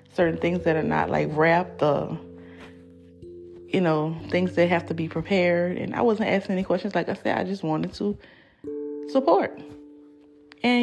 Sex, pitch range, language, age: female, 150-200 Hz, English, 30-49